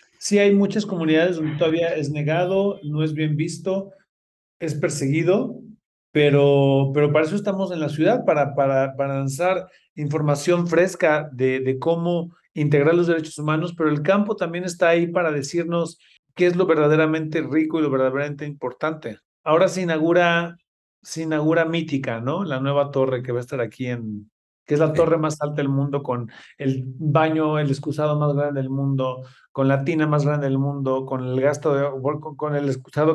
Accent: Mexican